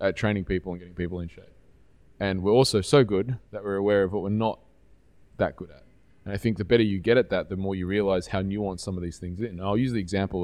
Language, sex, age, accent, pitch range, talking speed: English, male, 20-39, Australian, 95-110 Hz, 275 wpm